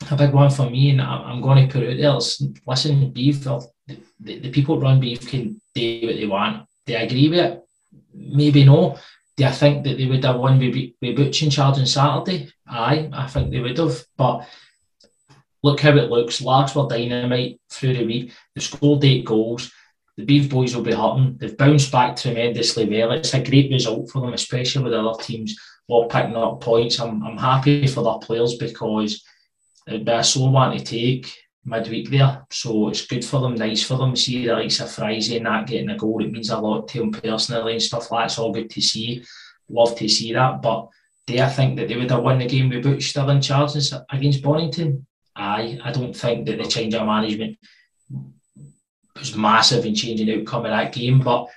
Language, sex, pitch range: English, male, 115-140 Hz